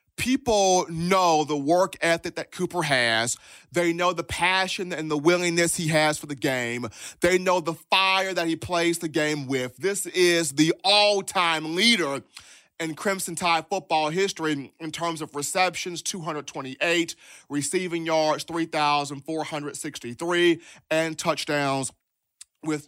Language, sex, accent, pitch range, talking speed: English, male, American, 155-195 Hz, 135 wpm